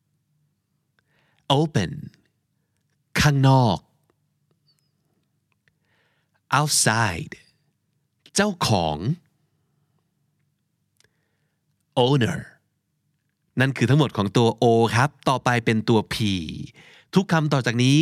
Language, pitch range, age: Thai, 125-155 Hz, 30-49